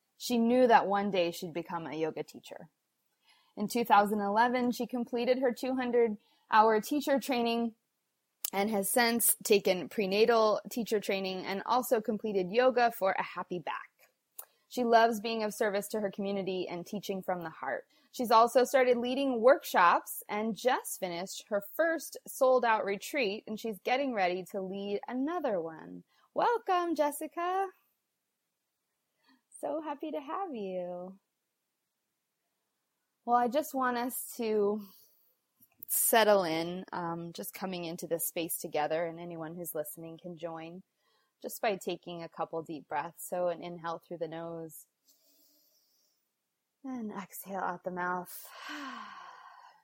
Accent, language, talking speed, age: American, English, 135 wpm, 20-39